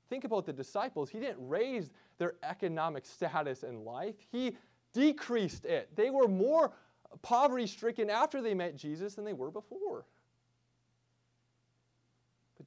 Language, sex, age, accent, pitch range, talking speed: English, male, 30-49, American, 155-220 Hz, 135 wpm